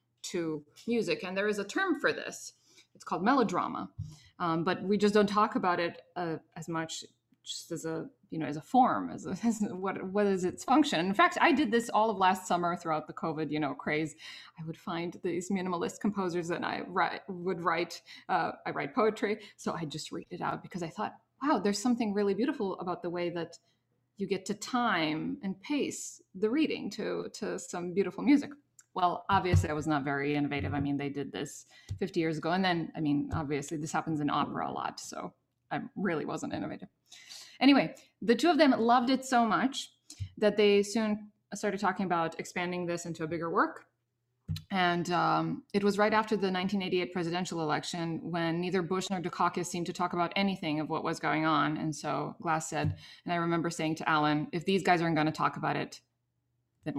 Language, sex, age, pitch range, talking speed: English, female, 20-39, 160-205 Hz, 205 wpm